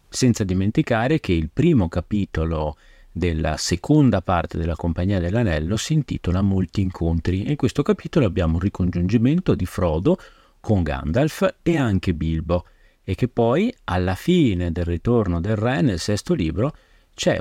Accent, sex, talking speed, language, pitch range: native, male, 150 wpm, Italian, 85-125 Hz